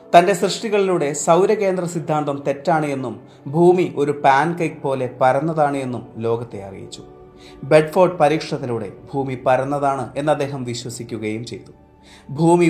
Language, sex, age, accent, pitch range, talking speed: Malayalam, male, 30-49, native, 120-170 Hz, 115 wpm